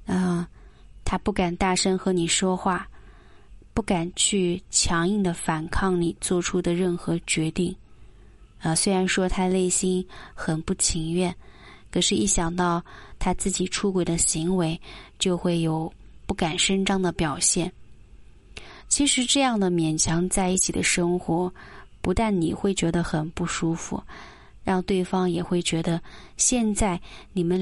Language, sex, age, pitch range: Chinese, female, 20-39, 165-190 Hz